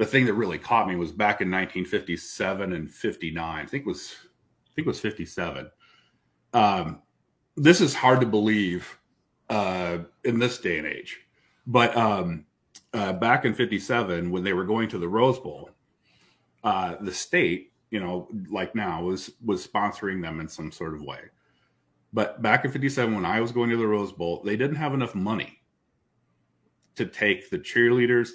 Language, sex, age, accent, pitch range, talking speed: English, male, 40-59, American, 90-120 Hz, 180 wpm